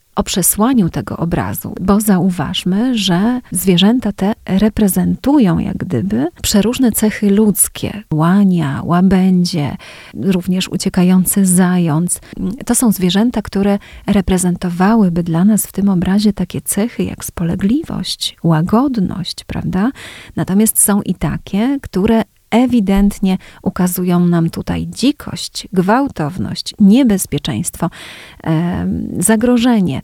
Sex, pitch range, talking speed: female, 180-220 Hz, 100 wpm